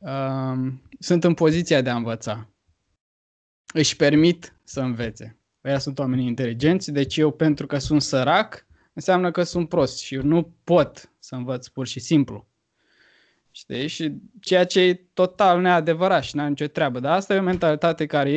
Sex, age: male, 20-39